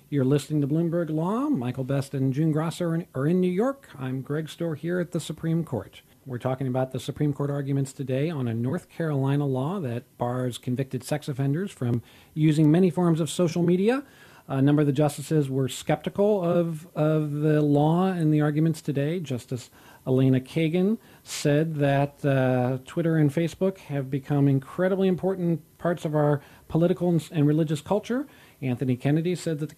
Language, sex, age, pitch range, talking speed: English, male, 40-59, 135-170 Hz, 175 wpm